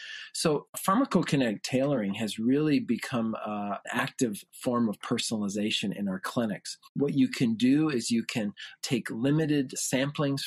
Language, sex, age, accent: English, male, 40-59, American